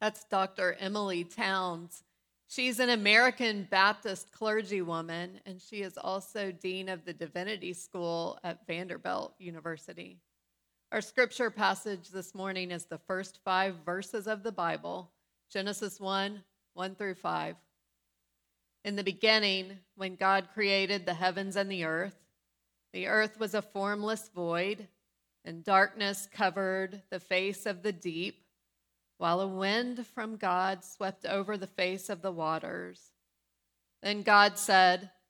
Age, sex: 30-49, female